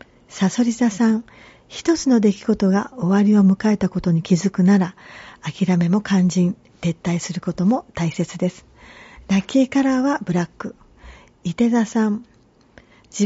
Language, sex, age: Japanese, female, 40-59